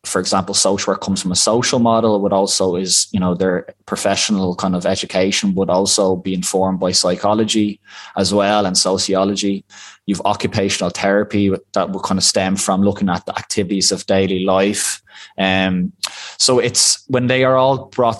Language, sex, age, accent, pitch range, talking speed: English, male, 20-39, Irish, 95-105 Hz, 175 wpm